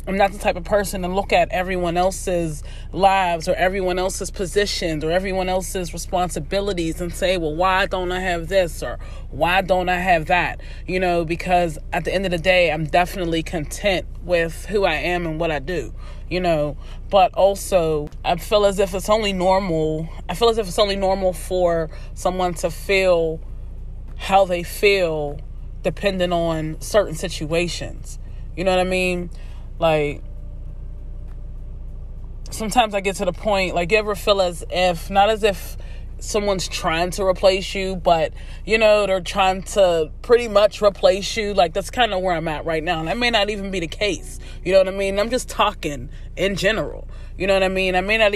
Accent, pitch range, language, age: American, 170-200 Hz, English, 30-49